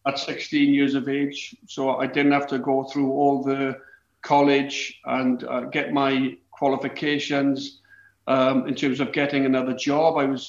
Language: English